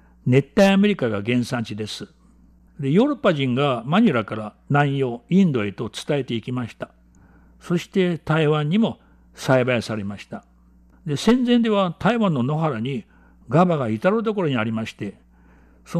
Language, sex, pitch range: Japanese, male, 95-155 Hz